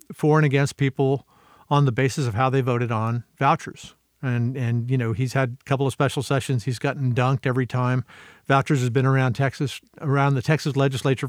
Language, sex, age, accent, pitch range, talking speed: English, male, 50-69, American, 130-145 Hz, 200 wpm